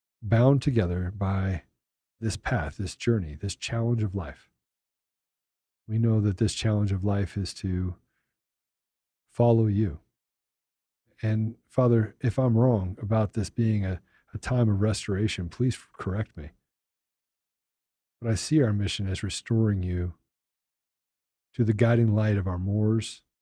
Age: 40-59